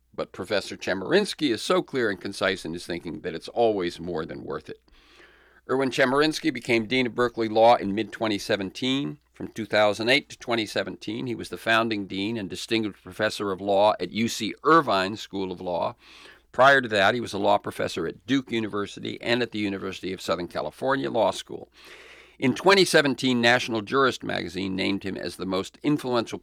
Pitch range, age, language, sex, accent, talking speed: 100-125 Hz, 50-69, English, male, American, 175 wpm